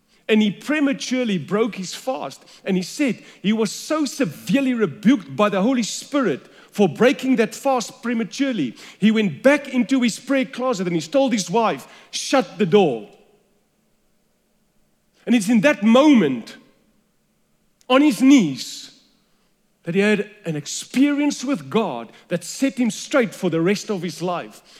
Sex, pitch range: male, 200-260 Hz